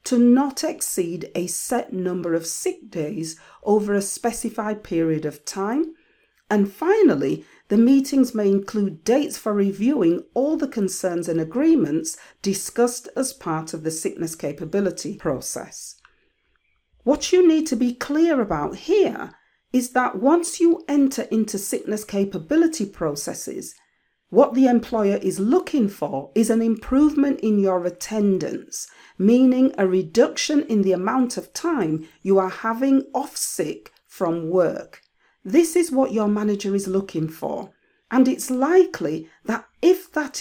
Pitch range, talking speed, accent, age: 195-280 Hz, 140 wpm, British, 40-59